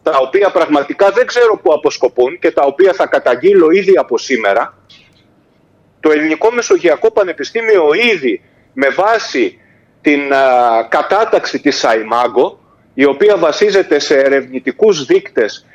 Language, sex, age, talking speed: Greek, male, 40-59, 120 wpm